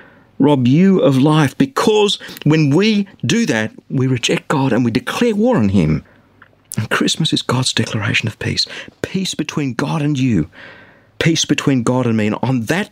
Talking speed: 175 wpm